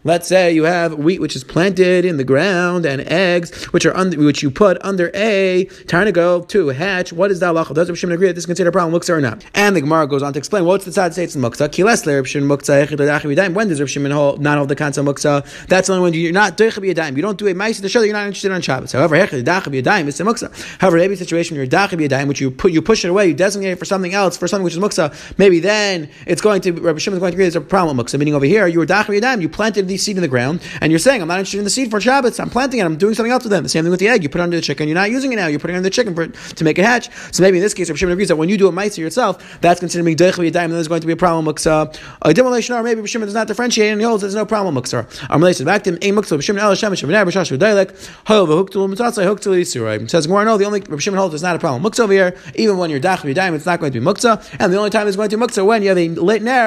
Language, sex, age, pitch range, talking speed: English, male, 30-49, 160-205 Hz, 300 wpm